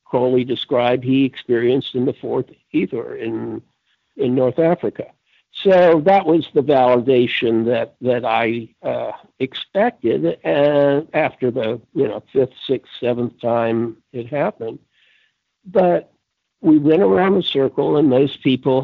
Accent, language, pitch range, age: American, English, 120-145 Hz, 60-79